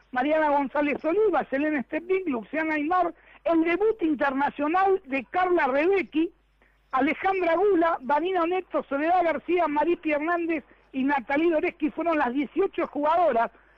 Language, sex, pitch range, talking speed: Spanish, male, 275-340 Hz, 120 wpm